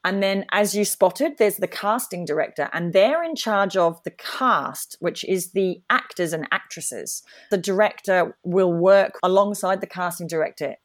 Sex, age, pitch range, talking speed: female, 30-49, 170-205 Hz, 165 wpm